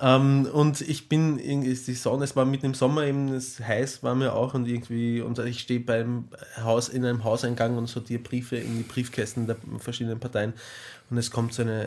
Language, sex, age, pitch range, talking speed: German, male, 20-39, 115-135 Hz, 200 wpm